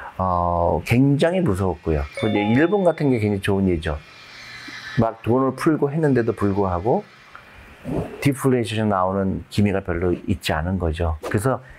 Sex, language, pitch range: male, Korean, 95-130 Hz